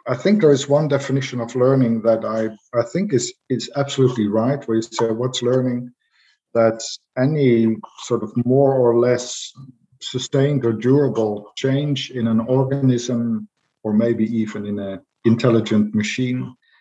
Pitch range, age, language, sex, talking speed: 110-130 Hz, 50-69, English, male, 150 wpm